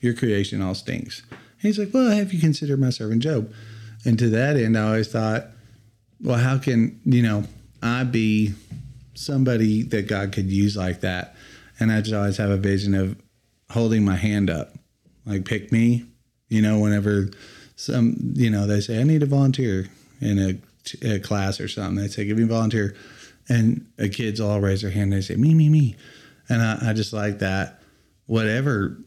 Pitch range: 100-125 Hz